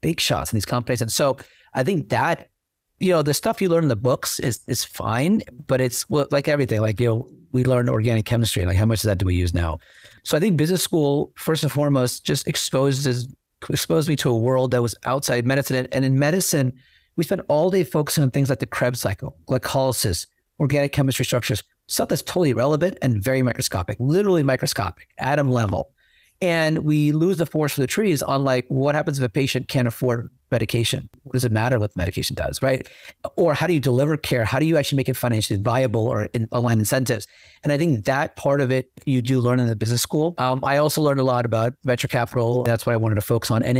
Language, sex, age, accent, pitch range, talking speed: English, male, 40-59, American, 120-145 Hz, 230 wpm